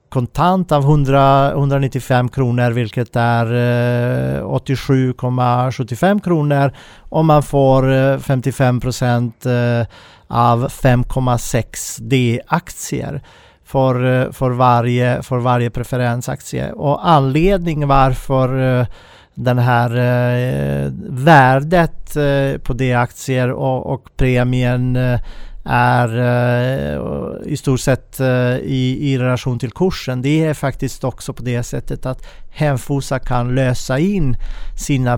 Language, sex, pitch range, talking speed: Swedish, male, 125-140 Hz, 100 wpm